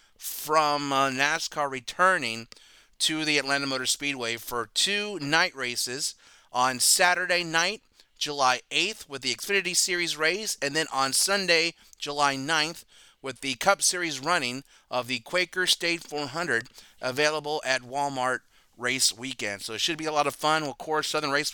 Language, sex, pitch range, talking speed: English, male, 130-170 Hz, 155 wpm